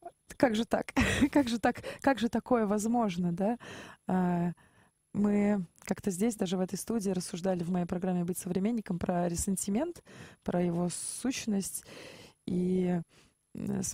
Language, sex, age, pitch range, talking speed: Russian, female, 20-39, 190-225 Hz, 125 wpm